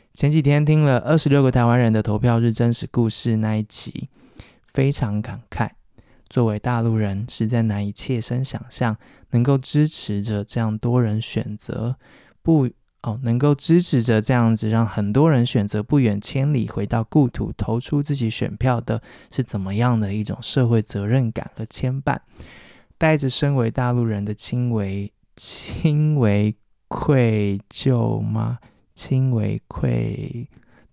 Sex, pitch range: male, 110-130 Hz